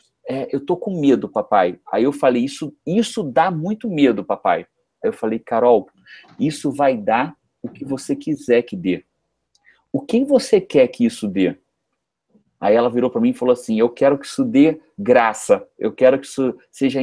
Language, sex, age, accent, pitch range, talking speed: English, male, 40-59, Brazilian, 140-230 Hz, 190 wpm